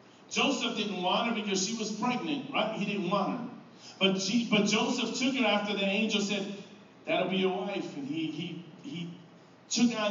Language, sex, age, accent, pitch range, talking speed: English, male, 40-59, American, 190-225 Hz, 195 wpm